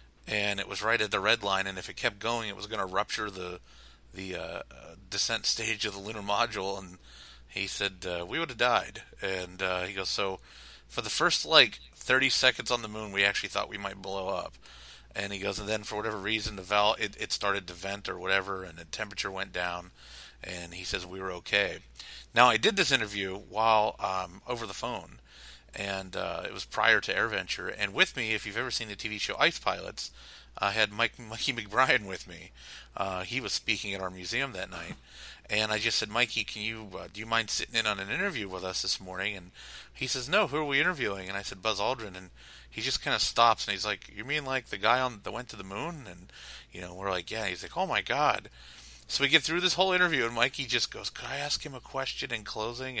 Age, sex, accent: 30-49, male, American